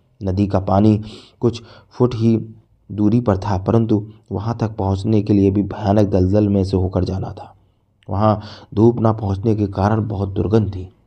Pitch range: 95-110 Hz